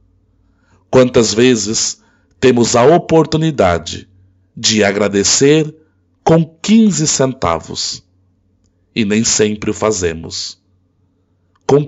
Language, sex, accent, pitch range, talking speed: Portuguese, male, Brazilian, 90-130 Hz, 80 wpm